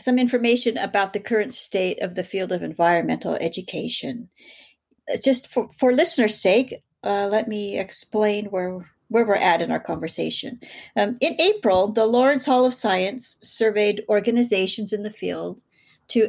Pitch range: 195-245 Hz